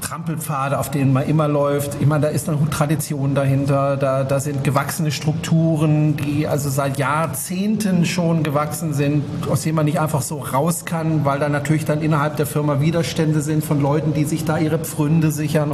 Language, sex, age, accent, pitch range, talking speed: German, male, 40-59, German, 150-195 Hz, 185 wpm